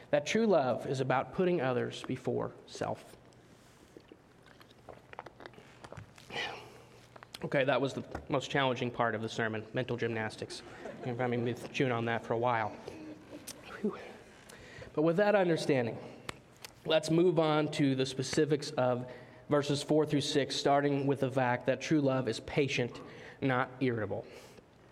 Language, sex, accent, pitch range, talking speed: English, male, American, 130-165 Hz, 130 wpm